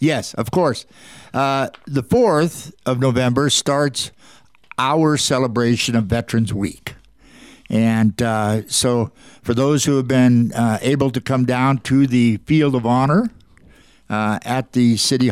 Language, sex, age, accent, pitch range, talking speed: English, male, 60-79, American, 115-140 Hz, 140 wpm